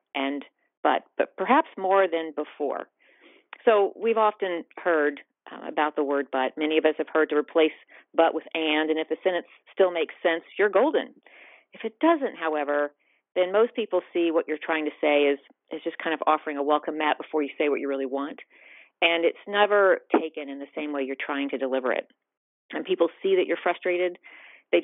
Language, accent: English, American